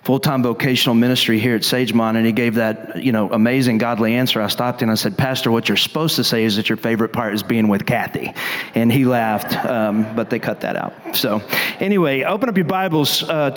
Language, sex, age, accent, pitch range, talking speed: English, male, 40-59, American, 130-170 Hz, 225 wpm